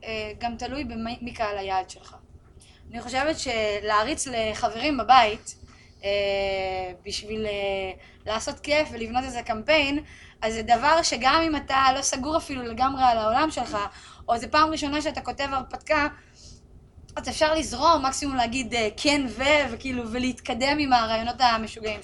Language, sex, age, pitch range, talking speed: Hebrew, female, 20-39, 230-300 Hz, 130 wpm